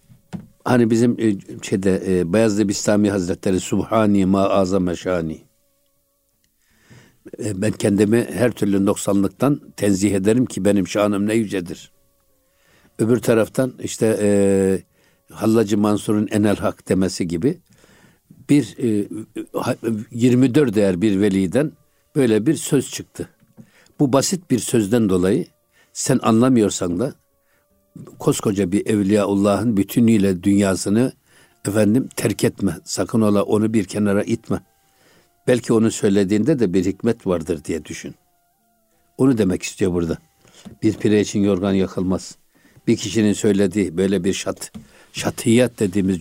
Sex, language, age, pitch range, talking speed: male, Turkish, 60-79, 100-120 Hz, 115 wpm